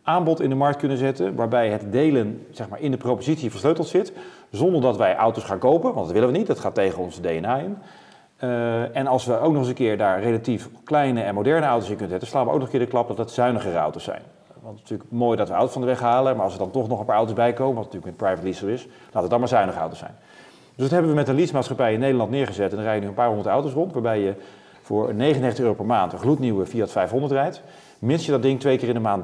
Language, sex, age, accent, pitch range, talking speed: Dutch, male, 40-59, Dutch, 105-135 Hz, 285 wpm